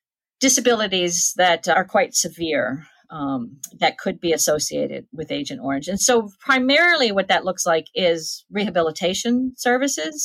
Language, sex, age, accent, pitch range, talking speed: English, female, 40-59, American, 175-220 Hz, 135 wpm